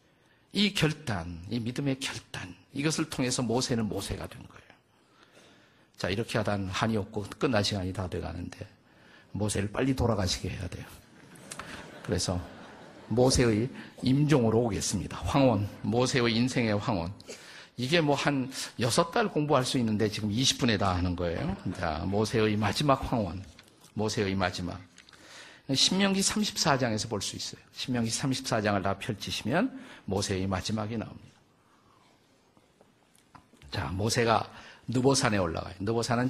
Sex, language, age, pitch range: male, Korean, 50-69, 100-130 Hz